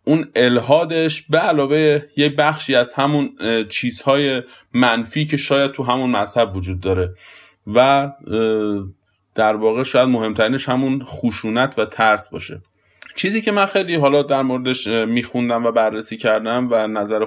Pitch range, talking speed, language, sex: 110-140 Hz, 140 wpm, Persian, male